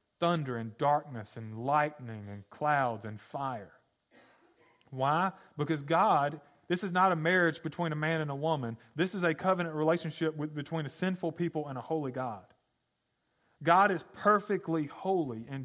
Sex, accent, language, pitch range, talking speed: male, American, English, 155-200 Hz, 160 wpm